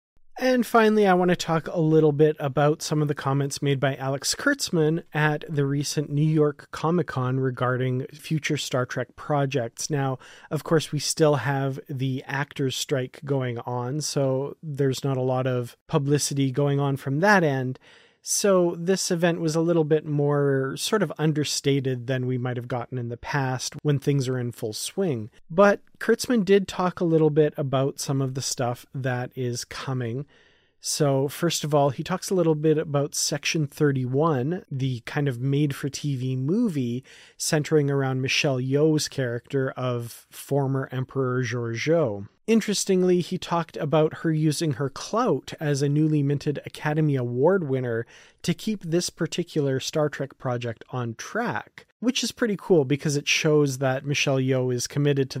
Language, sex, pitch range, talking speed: English, male, 130-155 Hz, 170 wpm